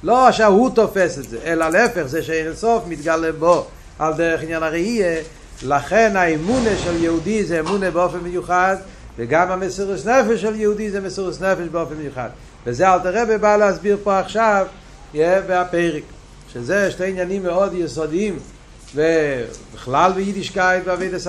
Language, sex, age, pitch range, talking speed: Hebrew, male, 60-79, 145-185 Hz, 140 wpm